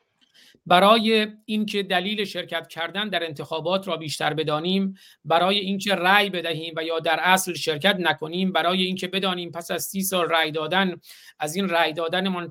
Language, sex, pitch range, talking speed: Persian, male, 165-195 Hz, 165 wpm